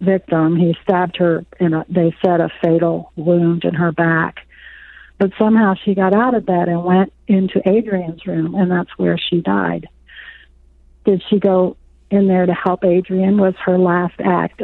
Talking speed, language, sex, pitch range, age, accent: 170 wpm, English, female, 175-205 Hz, 40-59, American